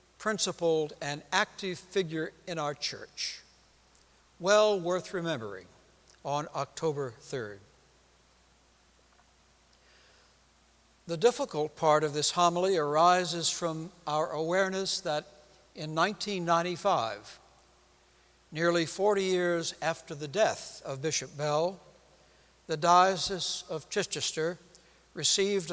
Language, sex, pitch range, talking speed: English, male, 135-180 Hz, 95 wpm